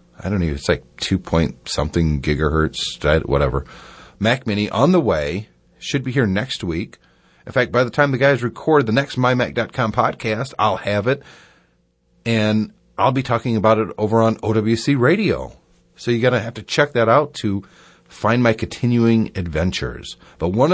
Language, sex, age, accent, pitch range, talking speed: English, male, 40-59, American, 85-125 Hz, 175 wpm